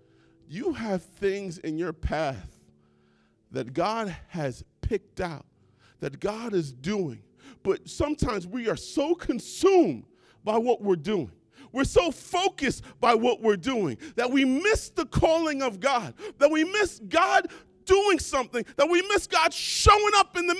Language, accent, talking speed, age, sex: English, American, 155 wpm, 40-59, male